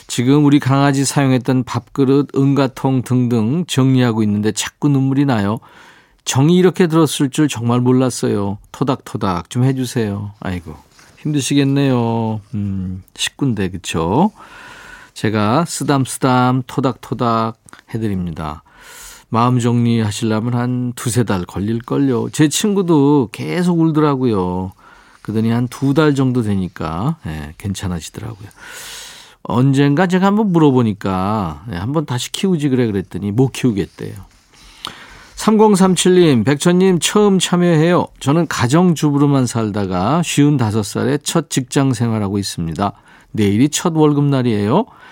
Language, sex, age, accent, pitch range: Korean, male, 40-59, native, 110-155 Hz